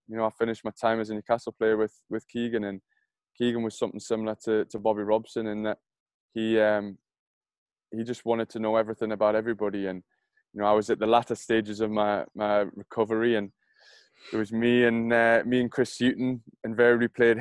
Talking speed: 205 wpm